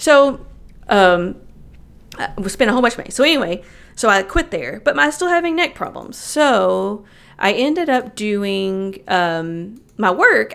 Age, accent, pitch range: 40-59, American, 180-235 Hz